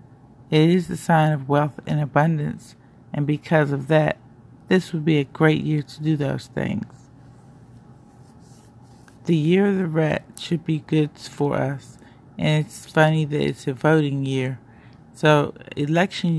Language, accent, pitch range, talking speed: English, American, 135-160 Hz, 155 wpm